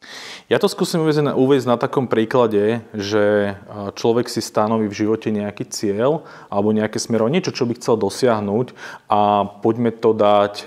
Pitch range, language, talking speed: 100-115 Hz, Slovak, 165 wpm